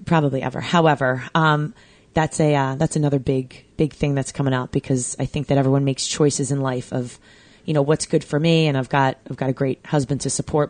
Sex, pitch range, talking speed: female, 140-175 Hz, 230 wpm